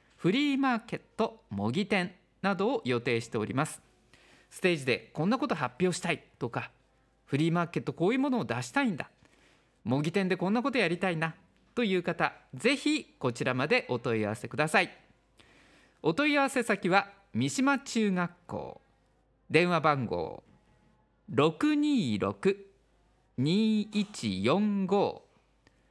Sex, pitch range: male, 125-210 Hz